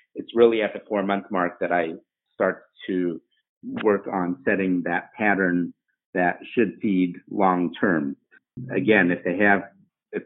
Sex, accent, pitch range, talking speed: male, American, 90-110 Hz, 150 wpm